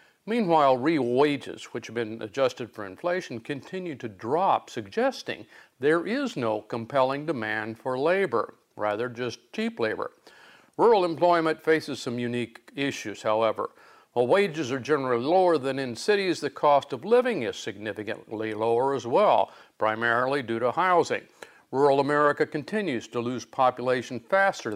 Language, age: English, 50-69